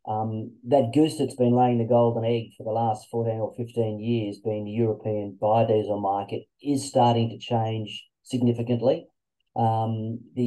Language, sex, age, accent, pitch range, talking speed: English, male, 30-49, Australian, 110-120 Hz, 160 wpm